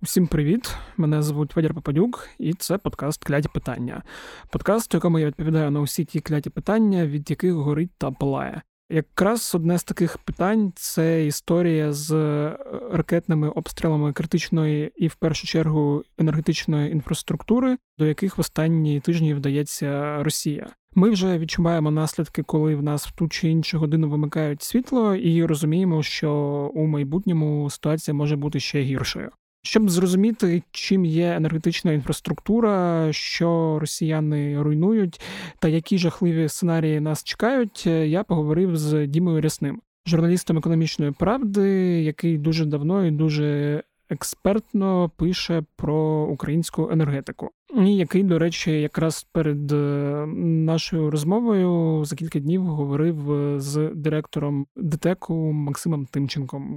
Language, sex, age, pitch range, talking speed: Ukrainian, male, 20-39, 150-175 Hz, 130 wpm